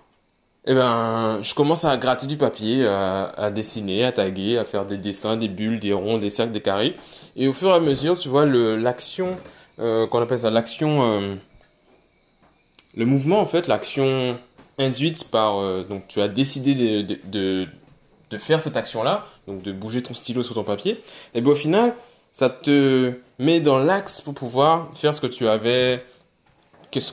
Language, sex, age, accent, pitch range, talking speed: French, male, 20-39, French, 110-145 Hz, 190 wpm